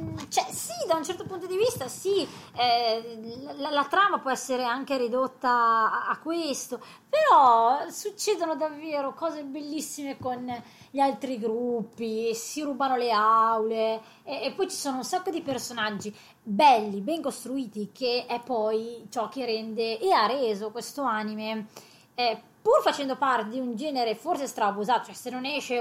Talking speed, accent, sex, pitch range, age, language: 165 wpm, native, female, 215-275 Hz, 20-39, Italian